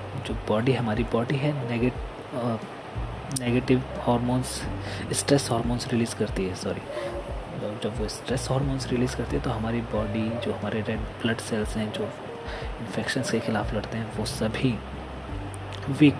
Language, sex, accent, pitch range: Hindi, male, native, 105-130 Hz